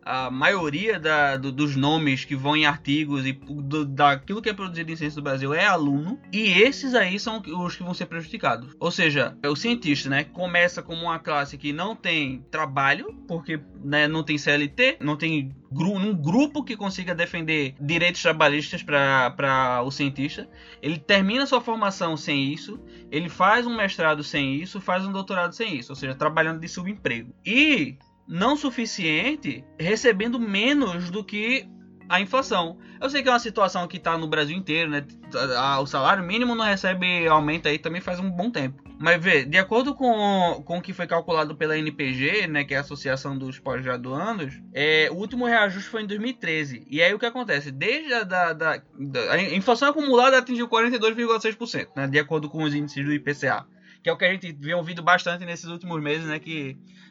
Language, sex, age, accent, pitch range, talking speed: Portuguese, male, 20-39, Brazilian, 145-205 Hz, 190 wpm